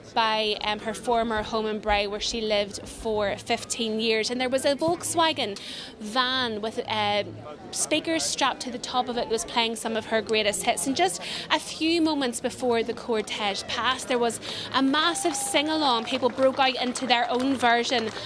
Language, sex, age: English, female, 20-39